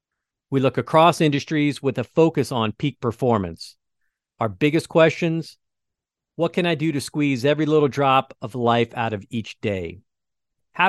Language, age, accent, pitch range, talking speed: English, 50-69, American, 110-145 Hz, 160 wpm